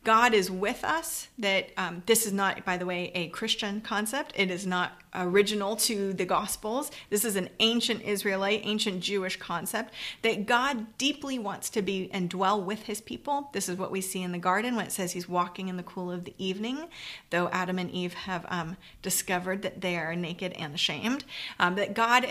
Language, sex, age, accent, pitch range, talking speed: English, female, 30-49, American, 185-220 Hz, 205 wpm